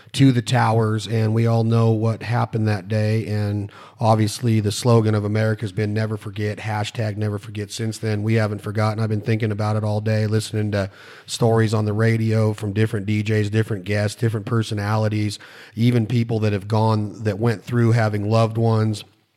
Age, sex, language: 40-59, male, English